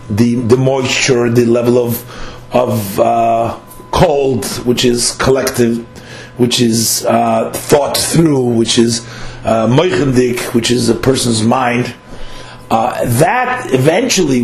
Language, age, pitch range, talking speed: English, 50-69, 115-145 Hz, 115 wpm